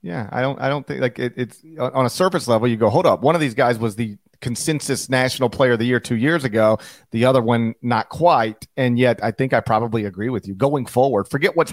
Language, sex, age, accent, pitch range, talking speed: English, male, 40-59, American, 120-145 Hz, 255 wpm